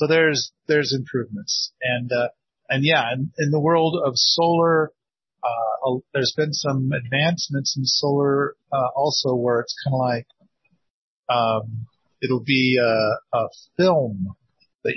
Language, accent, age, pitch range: English, American, 40-59, 120-155 Hz